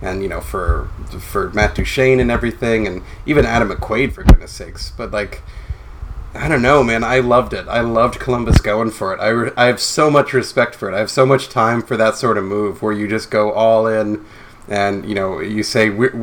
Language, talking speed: English, 230 wpm